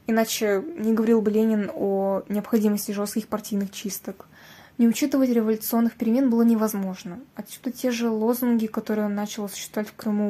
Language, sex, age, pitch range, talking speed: Russian, female, 10-29, 210-240 Hz, 150 wpm